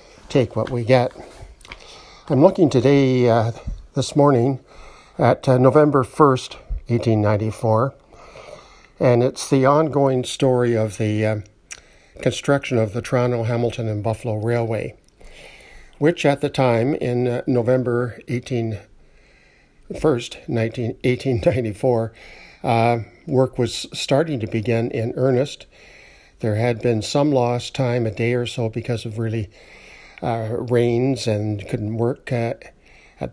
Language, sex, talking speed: English, male, 120 wpm